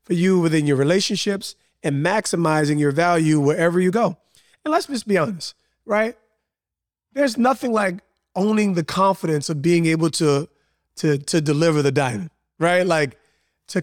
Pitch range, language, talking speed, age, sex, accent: 170-215 Hz, English, 150 wpm, 30-49, male, American